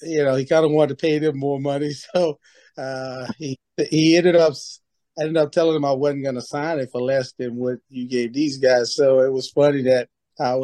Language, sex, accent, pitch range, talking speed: English, male, American, 130-160 Hz, 230 wpm